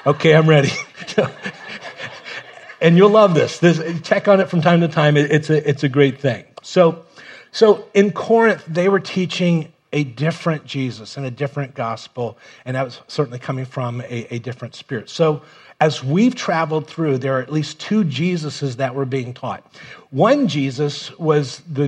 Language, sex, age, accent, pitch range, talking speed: English, male, 40-59, American, 140-165 Hz, 170 wpm